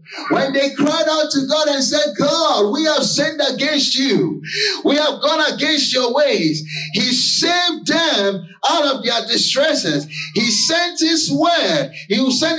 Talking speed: 155 wpm